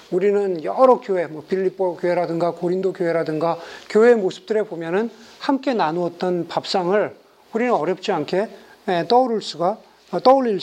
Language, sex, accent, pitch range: Korean, male, native, 175-230 Hz